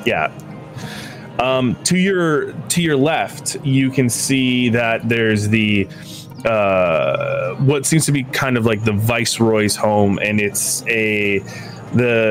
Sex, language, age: male, English, 20-39